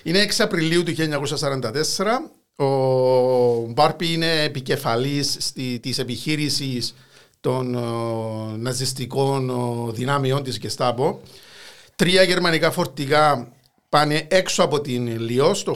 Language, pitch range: Greek, 125-155 Hz